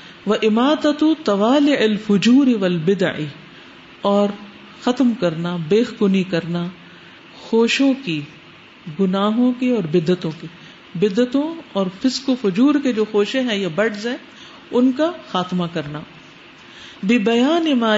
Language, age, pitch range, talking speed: Urdu, 50-69, 180-245 Hz, 105 wpm